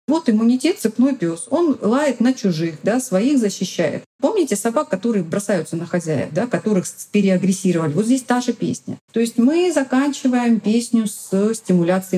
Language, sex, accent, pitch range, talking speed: Russian, female, native, 175-245 Hz, 160 wpm